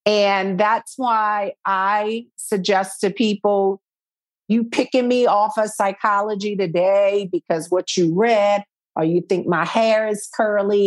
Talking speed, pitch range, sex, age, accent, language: 140 wpm, 195-230 Hz, female, 50-69, American, English